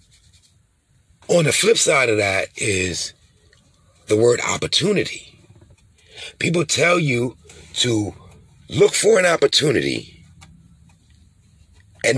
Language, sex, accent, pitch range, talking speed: English, male, American, 90-130 Hz, 95 wpm